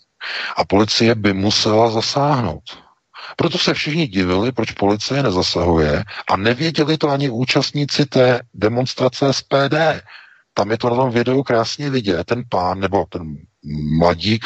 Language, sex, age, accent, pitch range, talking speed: Czech, male, 50-69, native, 95-120 Hz, 135 wpm